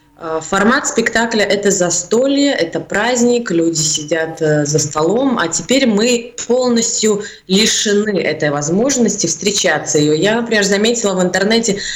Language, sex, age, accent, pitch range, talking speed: Russian, female, 20-39, native, 180-230 Hz, 120 wpm